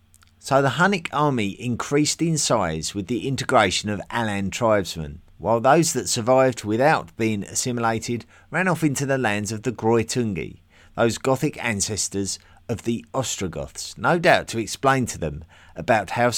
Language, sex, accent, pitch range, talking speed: English, male, British, 90-125 Hz, 155 wpm